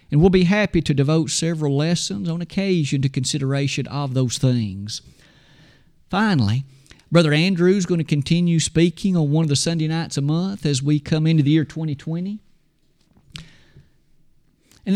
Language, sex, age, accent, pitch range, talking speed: English, male, 50-69, American, 140-175 Hz, 155 wpm